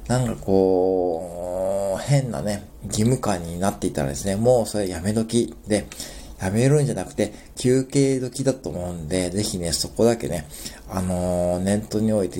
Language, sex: Japanese, male